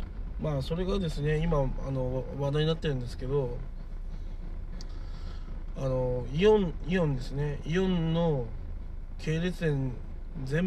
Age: 20-39